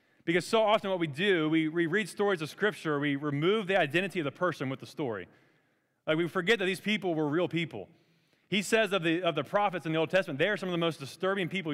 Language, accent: English, American